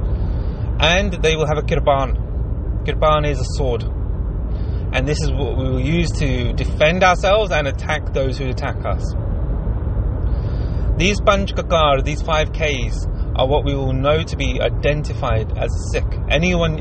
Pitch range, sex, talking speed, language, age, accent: 90-130 Hz, male, 155 wpm, English, 30-49, British